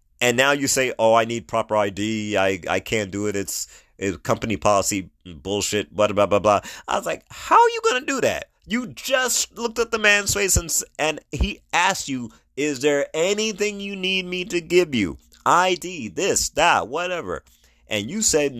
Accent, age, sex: American, 30-49, male